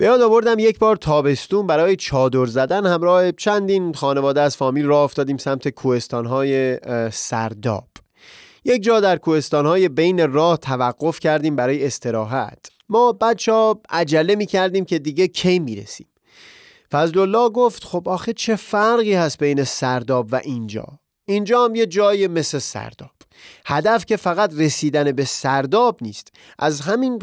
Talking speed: 145 wpm